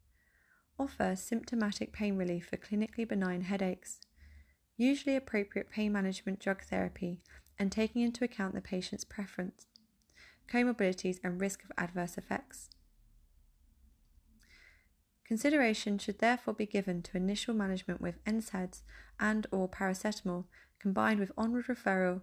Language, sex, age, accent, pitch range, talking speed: English, female, 30-49, British, 180-215 Hz, 120 wpm